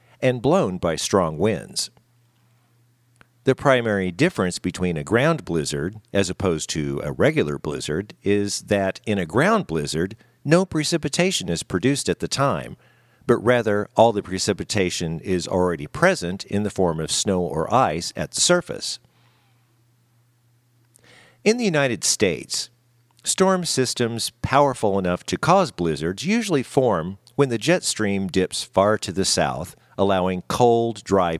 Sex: male